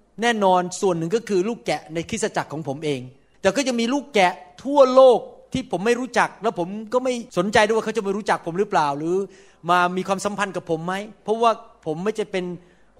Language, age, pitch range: Thai, 30-49, 185-235 Hz